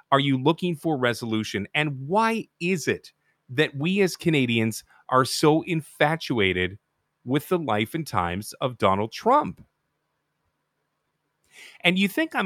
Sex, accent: male, American